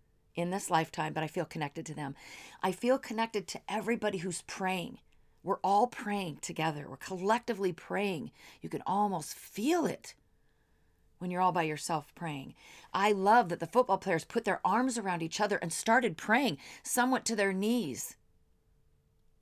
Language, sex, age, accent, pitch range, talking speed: English, female, 40-59, American, 175-220 Hz, 165 wpm